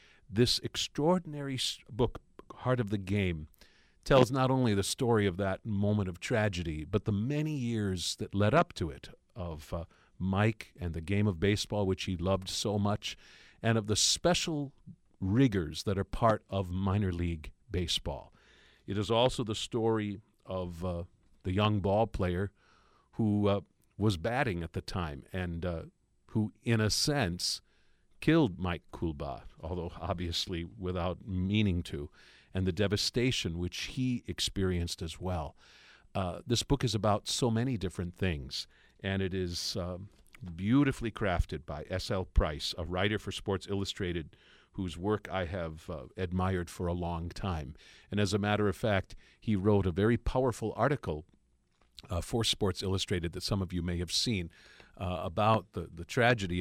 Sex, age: male, 50-69